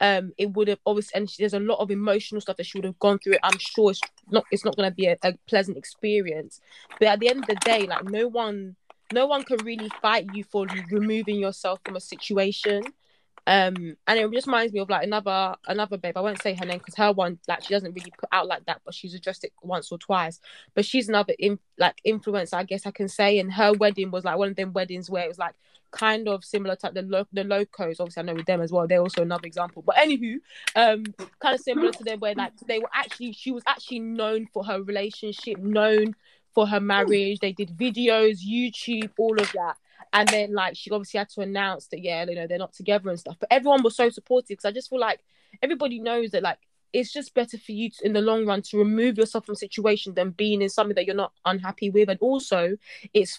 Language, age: English, 20-39